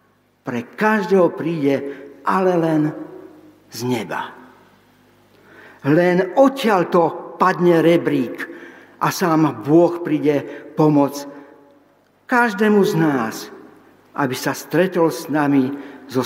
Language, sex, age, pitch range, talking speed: Slovak, male, 50-69, 150-220 Hz, 95 wpm